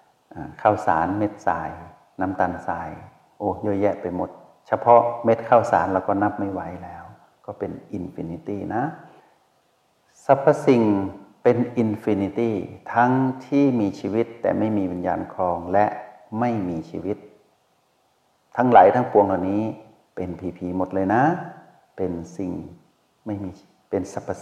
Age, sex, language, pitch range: 60-79, male, Thai, 95-115 Hz